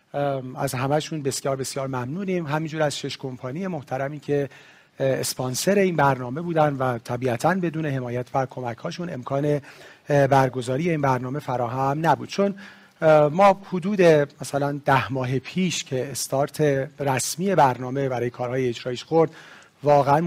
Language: Persian